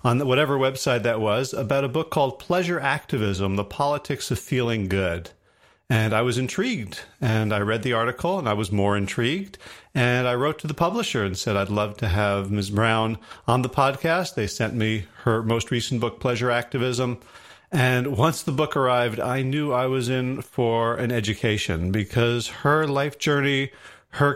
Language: English